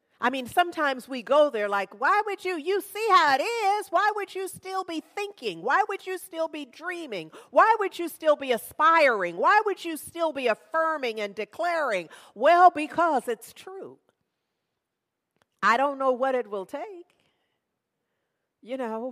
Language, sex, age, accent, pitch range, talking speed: English, female, 50-69, American, 235-330 Hz, 170 wpm